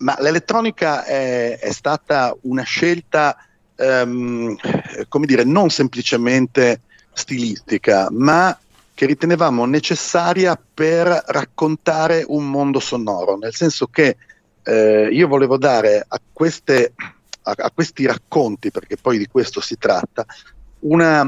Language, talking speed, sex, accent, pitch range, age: English, 120 wpm, male, Italian, 115-160 Hz, 50-69